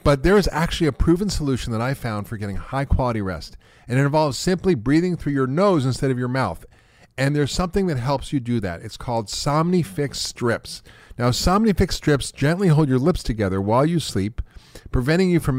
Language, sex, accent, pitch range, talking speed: English, male, American, 110-145 Hz, 205 wpm